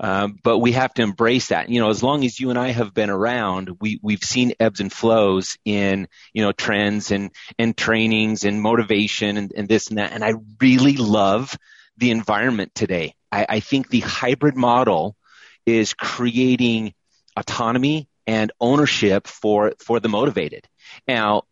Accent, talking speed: American, 170 wpm